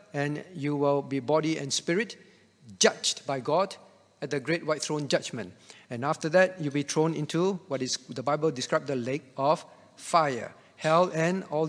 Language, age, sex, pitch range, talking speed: English, 50-69, male, 135-175 Hz, 180 wpm